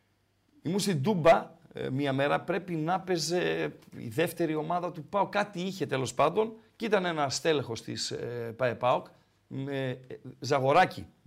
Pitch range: 150-235 Hz